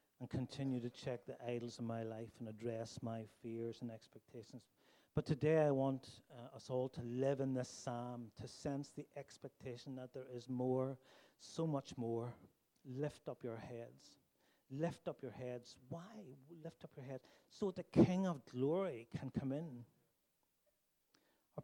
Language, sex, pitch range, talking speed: English, male, 120-140 Hz, 165 wpm